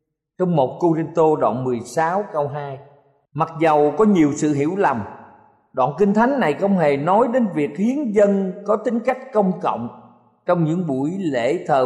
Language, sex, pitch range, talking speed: Vietnamese, male, 140-210 Hz, 170 wpm